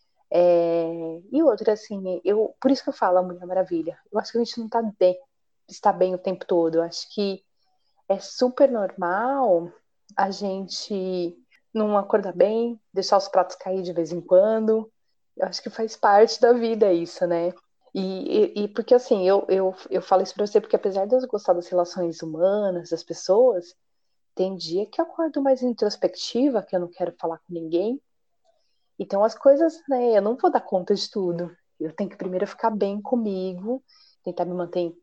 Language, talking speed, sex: Portuguese, 190 wpm, female